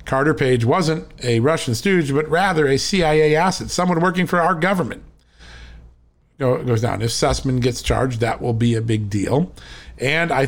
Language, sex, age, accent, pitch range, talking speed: English, male, 50-69, American, 115-150 Hz, 170 wpm